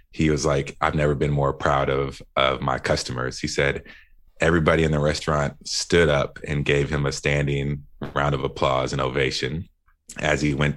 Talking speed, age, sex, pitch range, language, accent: 185 wpm, 30-49, male, 70-75 Hz, English, American